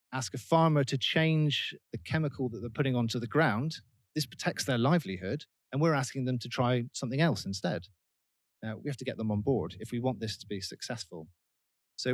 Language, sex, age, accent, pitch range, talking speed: English, male, 30-49, British, 105-140 Hz, 210 wpm